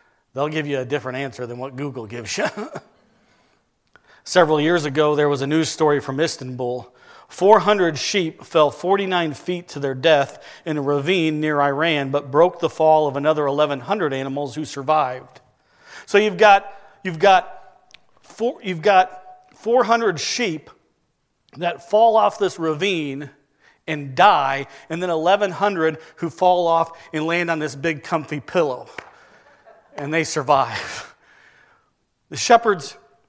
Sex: male